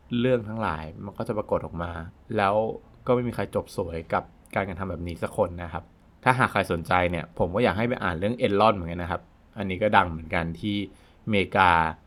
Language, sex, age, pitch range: Thai, male, 20-39, 90-125 Hz